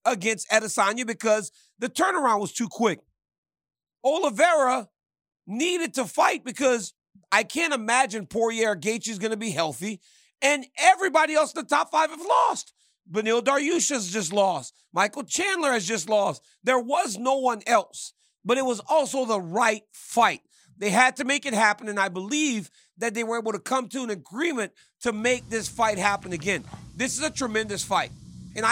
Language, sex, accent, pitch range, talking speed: English, male, American, 205-270 Hz, 180 wpm